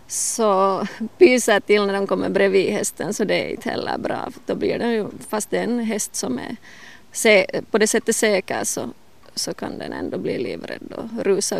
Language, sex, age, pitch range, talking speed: Swedish, female, 20-39, 195-230 Hz, 205 wpm